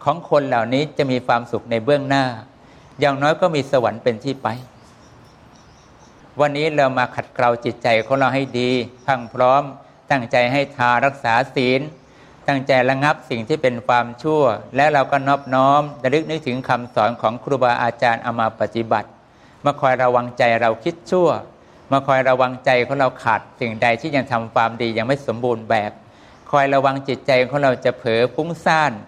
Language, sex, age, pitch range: English, male, 60-79, 120-145 Hz